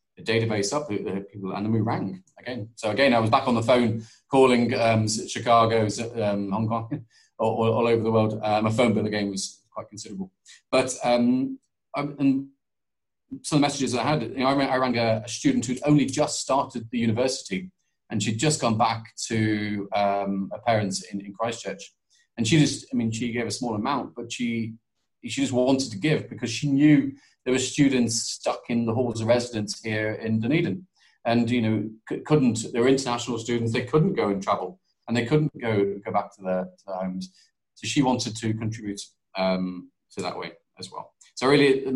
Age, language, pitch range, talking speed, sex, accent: 30-49, English, 105-130 Hz, 200 wpm, male, British